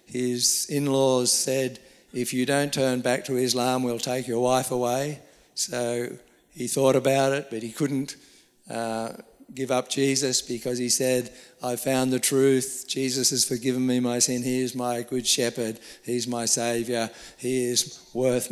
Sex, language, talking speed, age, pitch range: male, English, 165 wpm, 50-69, 120-135 Hz